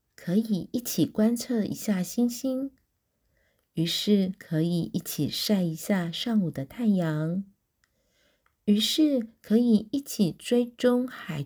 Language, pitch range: Chinese, 165-225 Hz